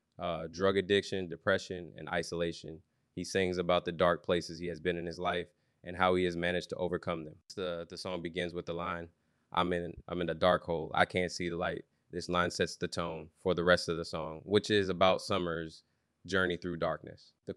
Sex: male